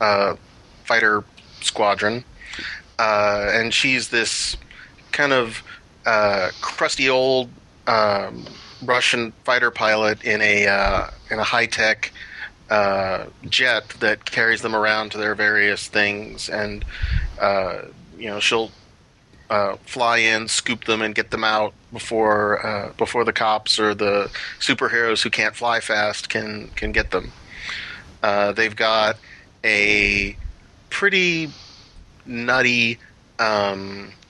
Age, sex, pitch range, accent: 30-49, male, 100-110 Hz, American